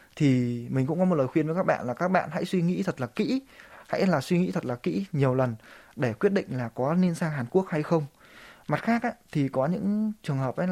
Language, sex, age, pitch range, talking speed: Vietnamese, male, 20-39, 130-175 Hz, 270 wpm